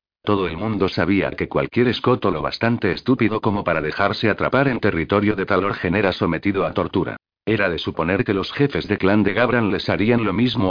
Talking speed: 200 wpm